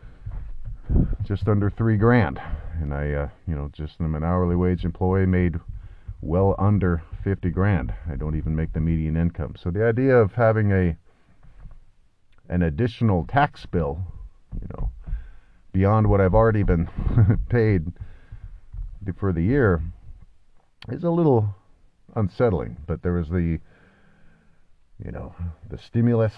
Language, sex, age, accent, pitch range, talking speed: English, male, 40-59, American, 85-100 Hz, 135 wpm